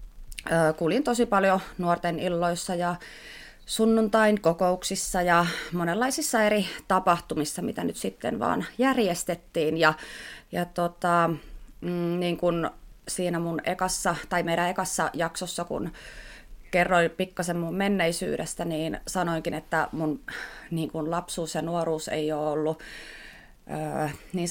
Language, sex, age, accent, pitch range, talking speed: Finnish, female, 30-49, native, 160-190 Hz, 115 wpm